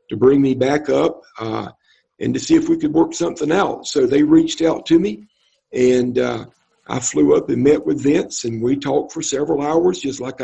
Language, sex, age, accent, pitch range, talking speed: English, male, 50-69, American, 130-190 Hz, 220 wpm